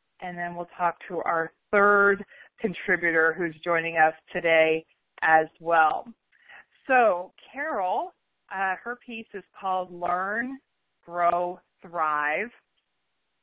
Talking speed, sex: 105 wpm, female